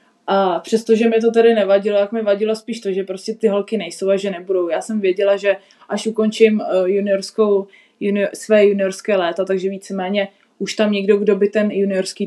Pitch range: 190-220 Hz